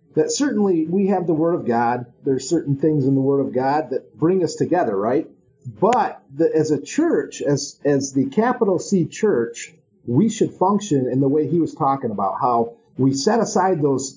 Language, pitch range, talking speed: English, 135-185 Hz, 205 wpm